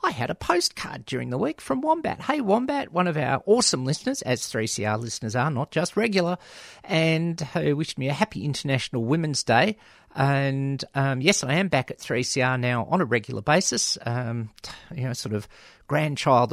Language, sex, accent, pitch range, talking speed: English, male, Australian, 120-155 Hz, 185 wpm